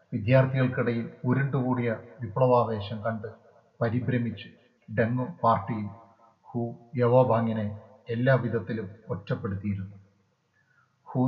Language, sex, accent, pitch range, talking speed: Malayalam, male, native, 105-125 Hz, 65 wpm